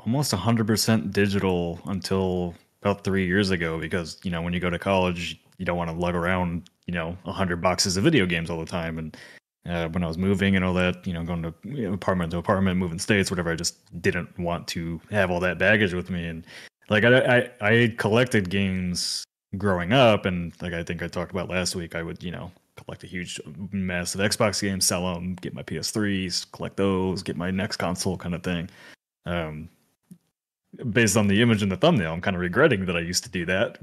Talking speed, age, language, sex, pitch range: 225 wpm, 20-39, English, male, 85-105 Hz